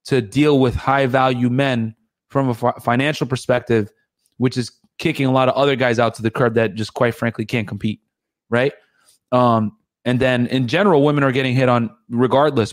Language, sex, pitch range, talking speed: English, male, 115-135 Hz, 195 wpm